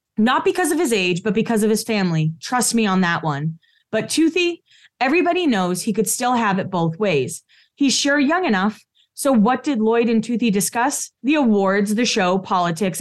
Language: English